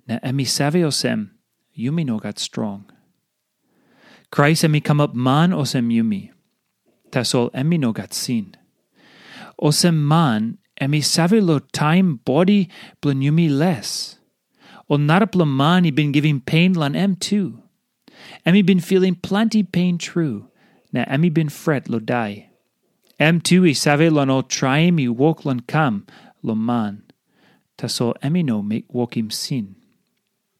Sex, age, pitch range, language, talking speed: male, 30-49, 130-180 Hz, English, 140 wpm